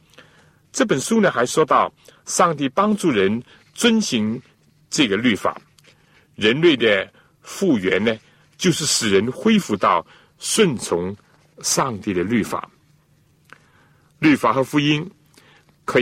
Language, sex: Chinese, male